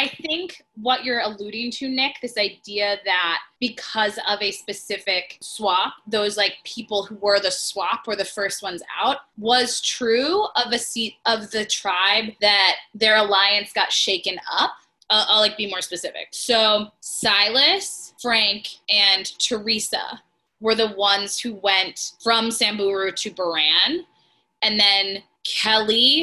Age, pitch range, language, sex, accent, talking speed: 20-39, 205-255 Hz, English, female, American, 145 wpm